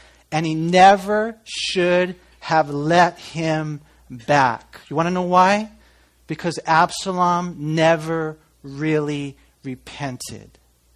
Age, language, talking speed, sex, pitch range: 40-59, English, 100 wpm, male, 160-215 Hz